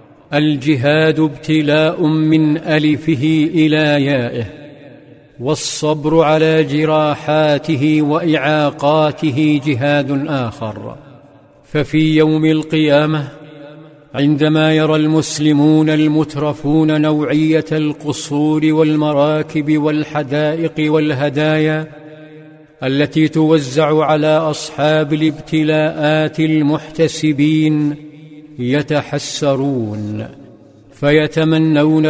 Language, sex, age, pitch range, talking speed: Arabic, male, 50-69, 145-155 Hz, 60 wpm